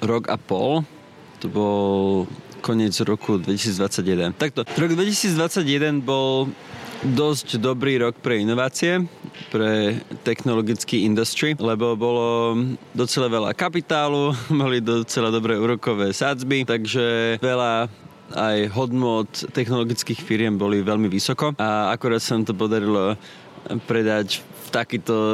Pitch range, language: 110-130 Hz, Slovak